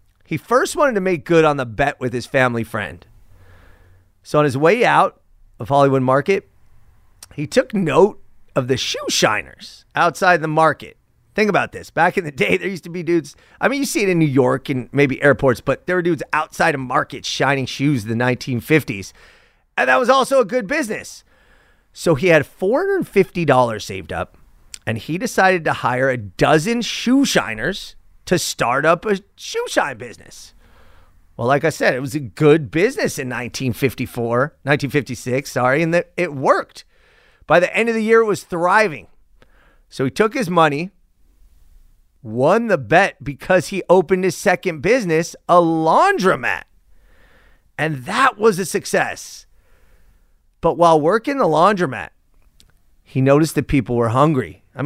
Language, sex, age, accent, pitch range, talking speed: English, male, 30-49, American, 115-180 Hz, 165 wpm